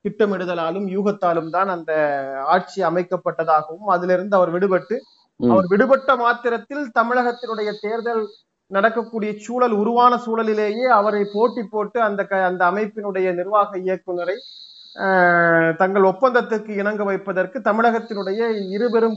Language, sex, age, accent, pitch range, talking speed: Tamil, male, 30-49, native, 185-235 Hz, 80 wpm